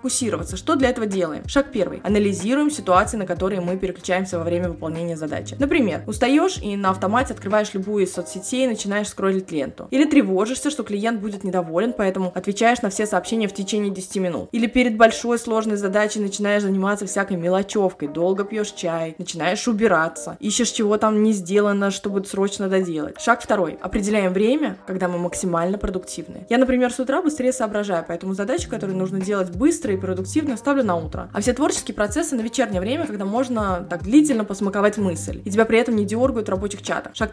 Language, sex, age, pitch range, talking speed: Russian, female, 20-39, 190-245 Hz, 185 wpm